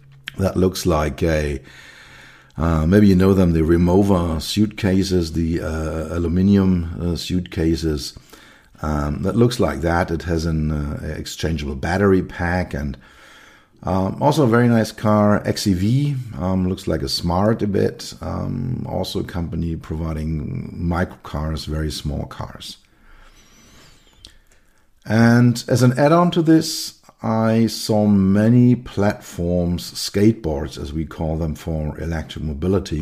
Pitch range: 80-105 Hz